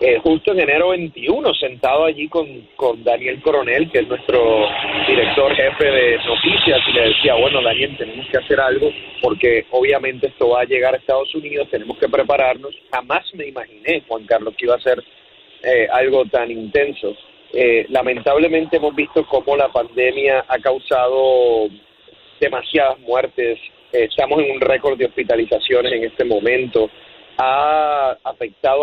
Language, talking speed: Spanish, 155 wpm